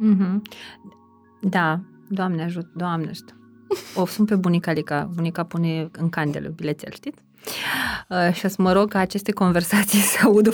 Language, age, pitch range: Romanian, 20-39, 175-245 Hz